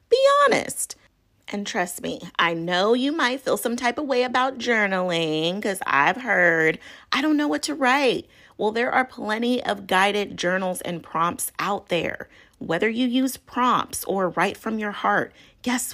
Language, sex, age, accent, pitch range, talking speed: English, female, 30-49, American, 190-255 Hz, 175 wpm